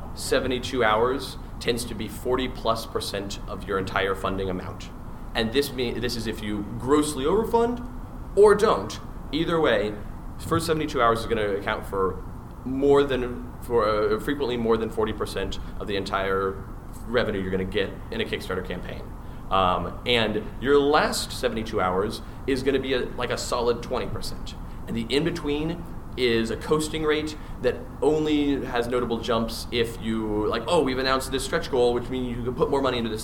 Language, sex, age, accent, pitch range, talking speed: English, male, 30-49, American, 105-135 Hz, 175 wpm